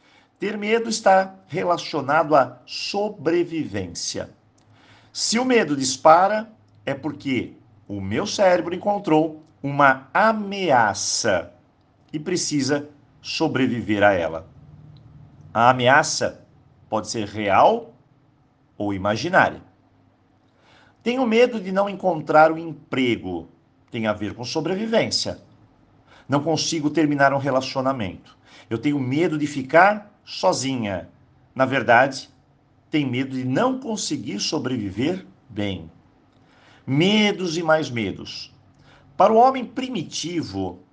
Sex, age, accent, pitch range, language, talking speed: male, 50-69, Brazilian, 115-170 Hz, Portuguese, 105 wpm